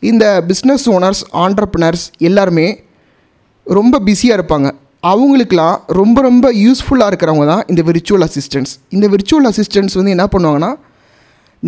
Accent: native